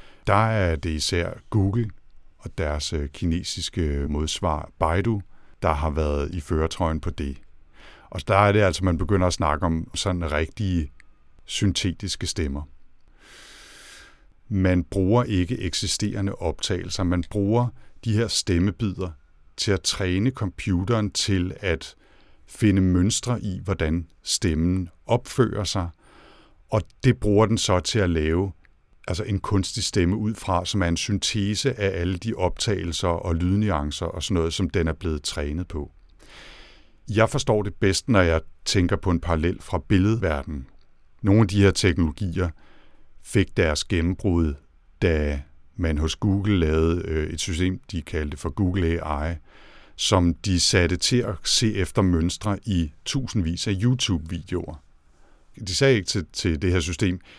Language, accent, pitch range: Danish, native, 80-100 Hz